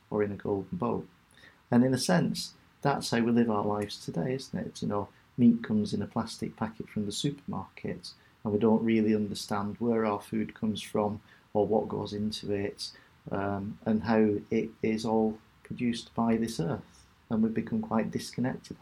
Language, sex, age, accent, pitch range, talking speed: English, male, 40-59, British, 105-125 Hz, 190 wpm